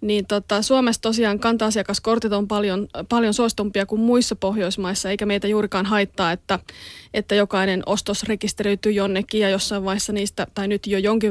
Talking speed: 160 wpm